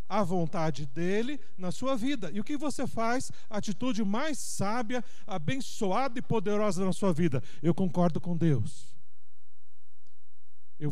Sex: male